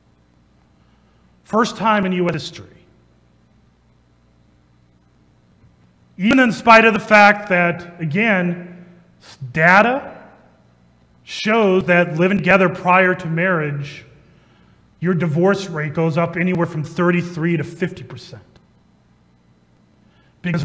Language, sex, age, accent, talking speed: English, male, 30-49, American, 90 wpm